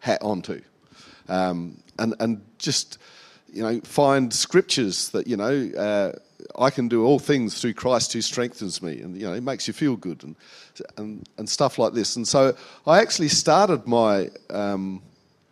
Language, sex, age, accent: English, male, 40-59, Australian